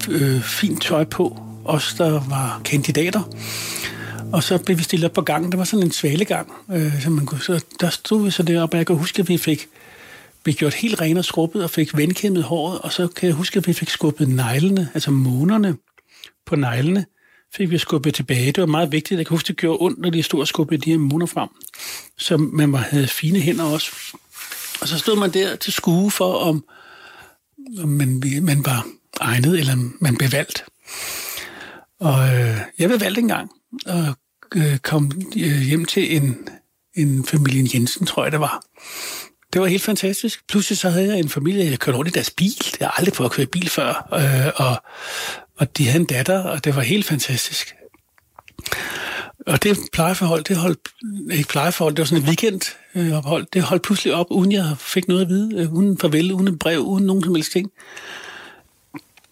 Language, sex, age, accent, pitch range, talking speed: Danish, male, 60-79, native, 145-185 Hz, 200 wpm